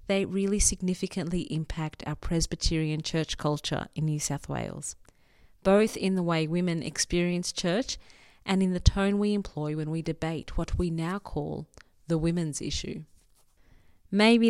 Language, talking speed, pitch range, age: English, 150 wpm, 150-190 Hz, 30-49